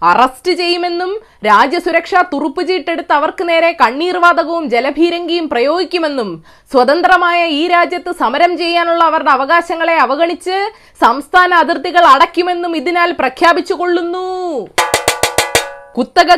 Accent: native